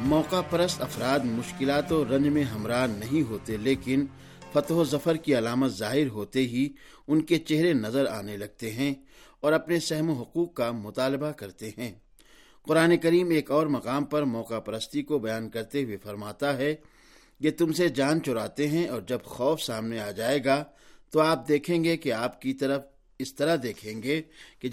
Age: 50-69